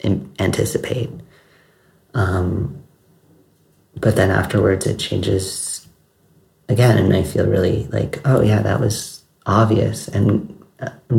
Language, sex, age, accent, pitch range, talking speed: English, male, 40-59, American, 95-115 Hz, 115 wpm